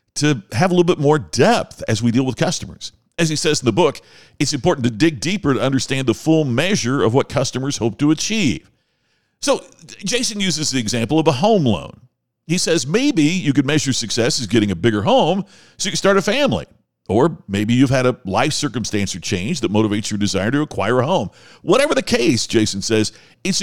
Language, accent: English, American